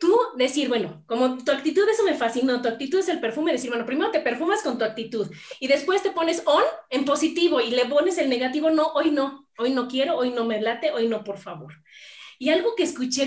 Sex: female